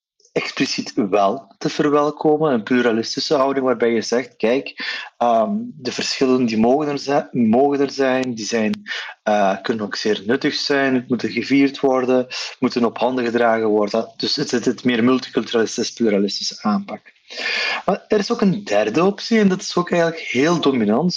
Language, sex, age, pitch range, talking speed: Dutch, male, 30-49, 120-150 Hz, 150 wpm